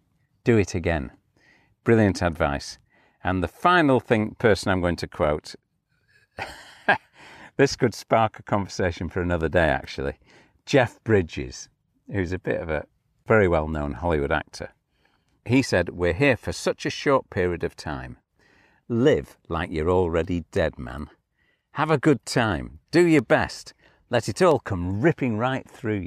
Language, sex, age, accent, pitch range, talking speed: English, male, 50-69, British, 85-120 Hz, 150 wpm